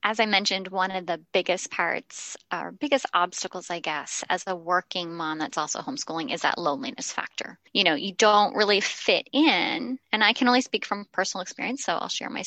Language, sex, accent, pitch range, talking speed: English, female, American, 180-235 Hz, 205 wpm